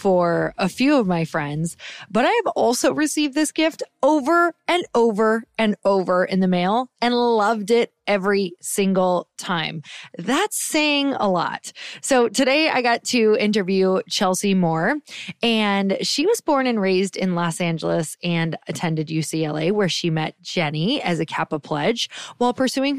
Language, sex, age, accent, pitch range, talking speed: English, female, 20-39, American, 170-230 Hz, 160 wpm